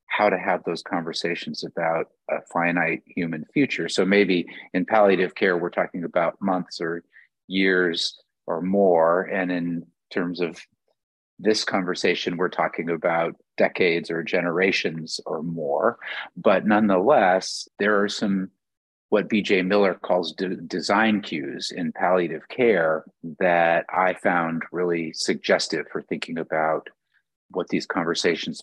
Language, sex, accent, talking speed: English, male, American, 130 wpm